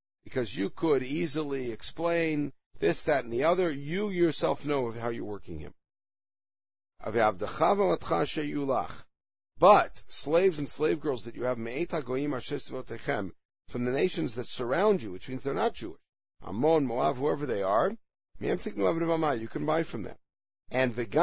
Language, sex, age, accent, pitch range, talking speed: English, male, 50-69, American, 115-155 Hz, 135 wpm